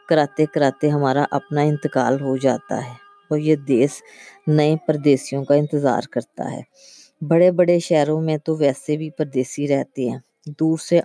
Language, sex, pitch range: Urdu, female, 135-155 Hz